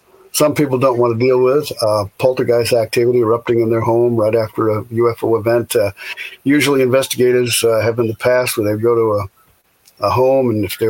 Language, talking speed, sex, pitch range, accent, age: English, 205 wpm, male, 110-125 Hz, American, 50-69